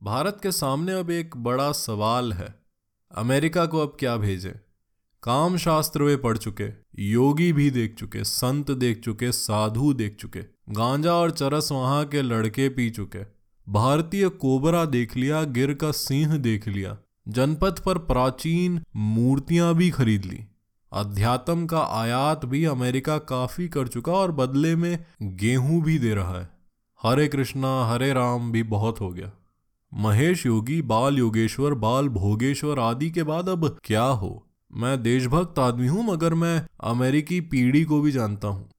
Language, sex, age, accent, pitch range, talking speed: Hindi, male, 20-39, native, 110-150 Hz, 155 wpm